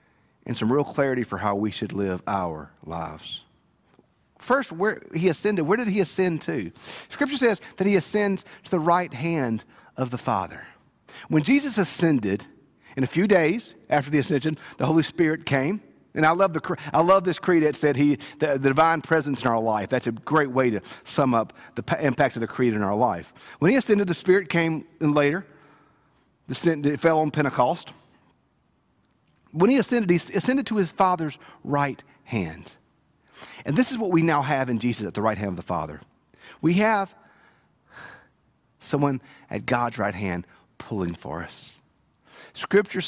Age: 50-69